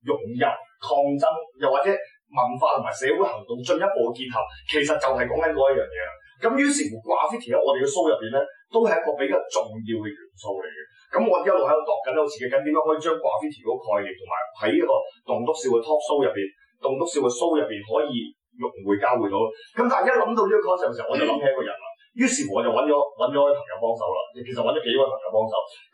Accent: native